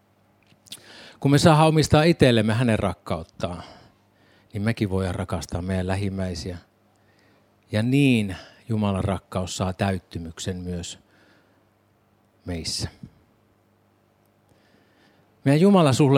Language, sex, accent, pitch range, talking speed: Finnish, male, native, 95-120 Hz, 80 wpm